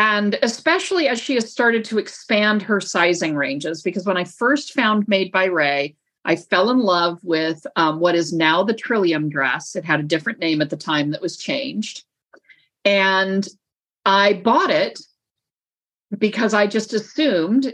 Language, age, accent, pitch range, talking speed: English, 50-69, American, 170-215 Hz, 170 wpm